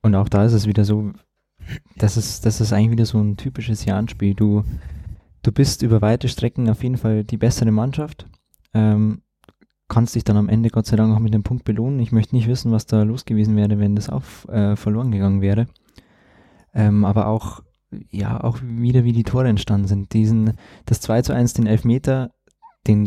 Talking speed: 205 wpm